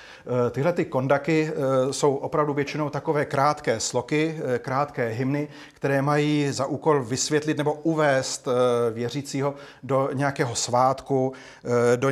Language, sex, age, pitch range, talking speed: Slovak, male, 40-59, 130-150 Hz, 110 wpm